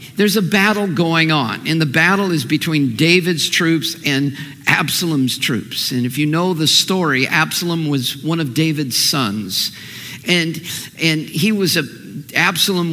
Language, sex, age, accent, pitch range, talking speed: English, male, 50-69, American, 150-195 Hz, 155 wpm